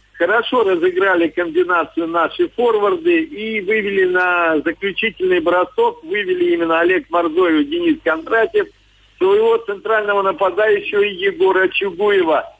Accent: native